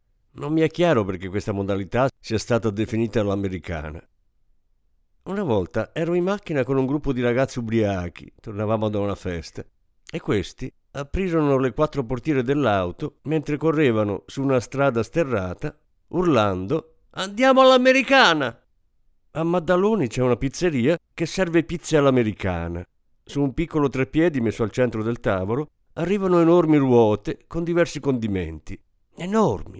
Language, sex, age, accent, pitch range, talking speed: Italian, male, 50-69, native, 105-155 Hz, 135 wpm